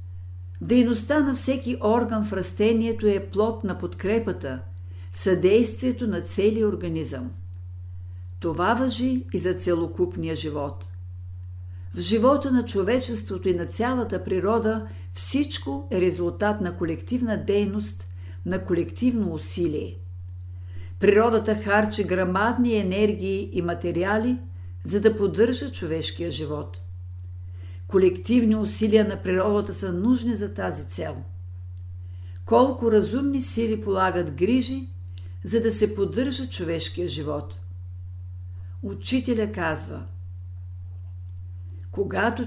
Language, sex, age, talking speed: Bulgarian, female, 50-69, 100 wpm